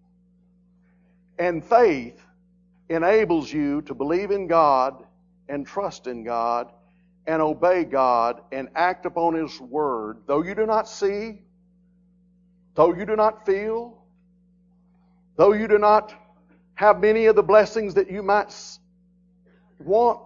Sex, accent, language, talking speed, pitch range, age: male, American, English, 125 wpm, 180-220 Hz, 60-79